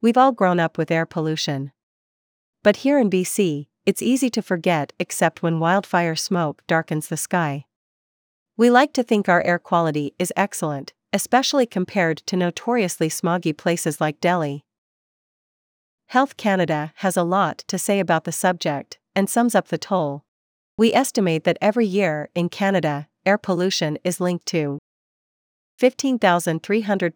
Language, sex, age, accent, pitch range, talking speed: English, female, 40-59, American, 160-200 Hz, 150 wpm